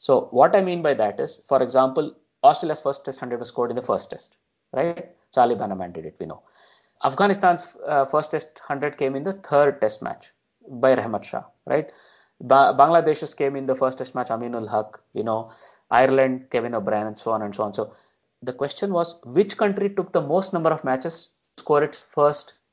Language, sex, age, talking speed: English, male, 30-49, 205 wpm